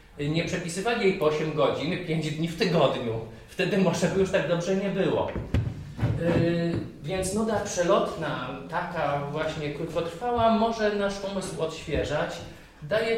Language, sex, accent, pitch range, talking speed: Polish, male, native, 130-165 Hz, 135 wpm